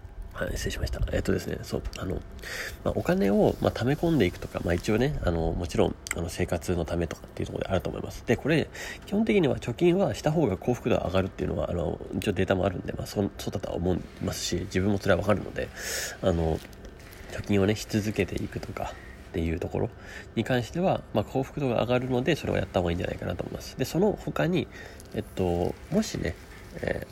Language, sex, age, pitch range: English, male, 30-49, 90-120 Hz